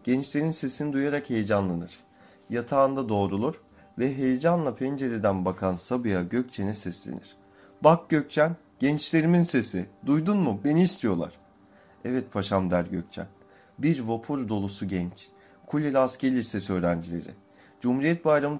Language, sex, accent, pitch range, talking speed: Turkish, male, native, 100-140 Hz, 115 wpm